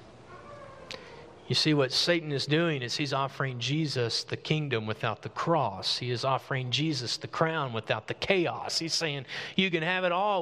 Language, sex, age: English, male, 40-59